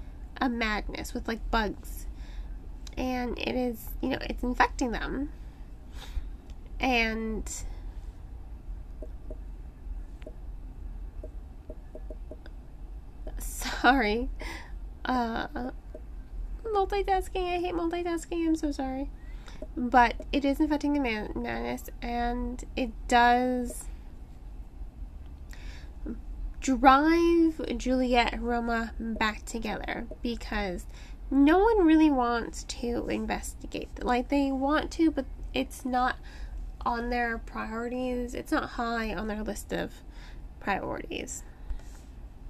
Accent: American